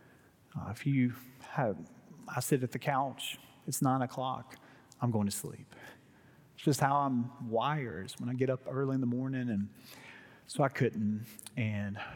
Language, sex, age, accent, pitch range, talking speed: English, male, 40-59, American, 120-140 Hz, 170 wpm